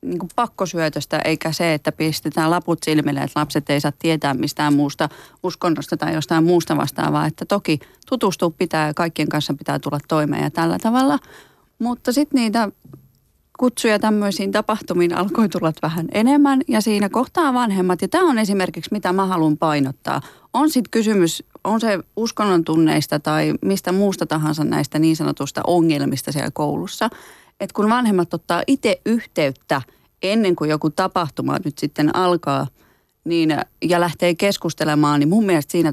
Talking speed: 155 wpm